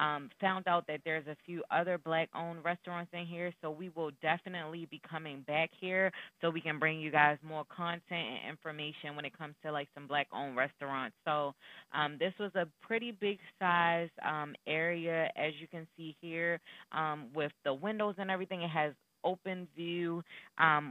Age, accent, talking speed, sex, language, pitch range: 20-39, American, 190 wpm, female, English, 150-175 Hz